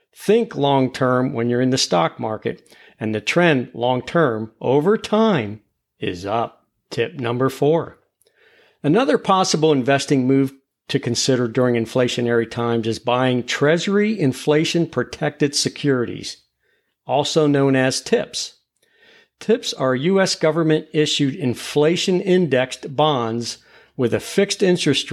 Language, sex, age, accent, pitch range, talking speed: English, male, 50-69, American, 120-160 Hz, 110 wpm